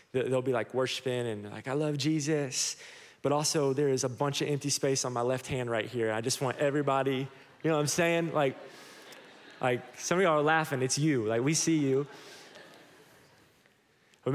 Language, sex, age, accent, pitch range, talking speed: English, male, 20-39, American, 125-155 Hz, 195 wpm